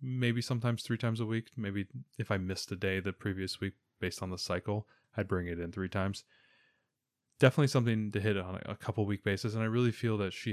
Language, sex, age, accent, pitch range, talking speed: English, male, 20-39, American, 95-115 Hz, 230 wpm